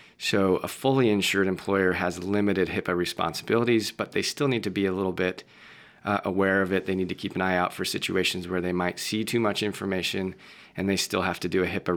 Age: 30-49